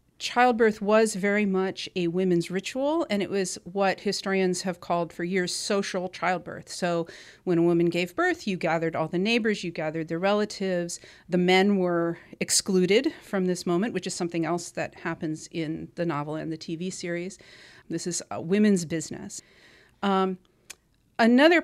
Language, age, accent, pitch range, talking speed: English, 40-59, American, 170-195 Hz, 165 wpm